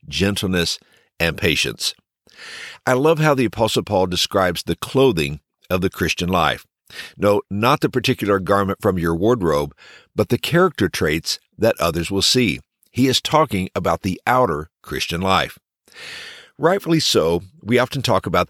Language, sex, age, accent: English, male, 50-69, American